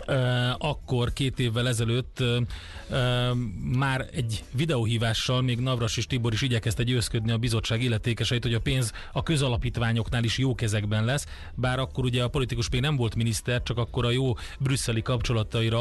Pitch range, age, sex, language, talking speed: 110-130 Hz, 30-49, male, Hungarian, 155 wpm